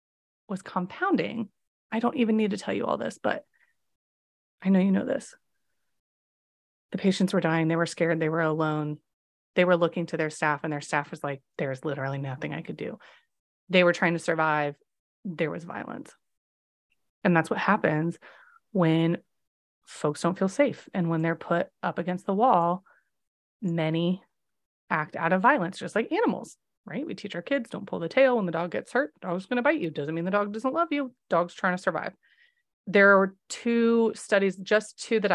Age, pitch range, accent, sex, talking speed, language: 30-49, 170-220 Hz, American, female, 195 wpm, English